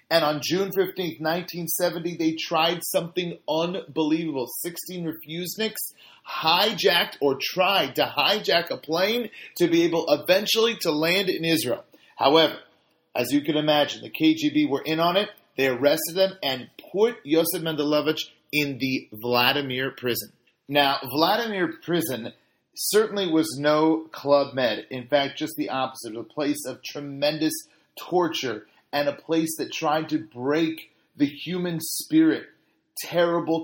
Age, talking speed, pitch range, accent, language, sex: 30-49, 135 wpm, 145-175 Hz, American, English, male